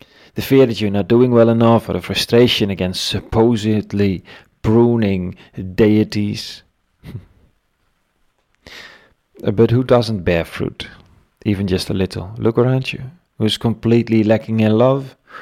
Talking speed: 125 wpm